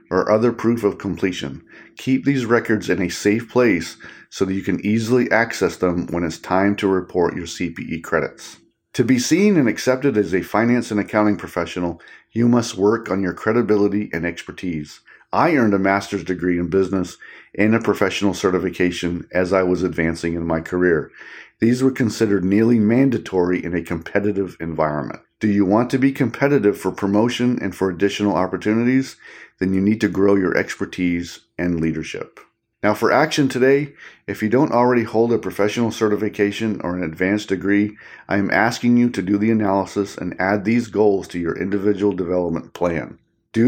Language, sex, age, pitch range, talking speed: English, male, 40-59, 90-115 Hz, 175 wpm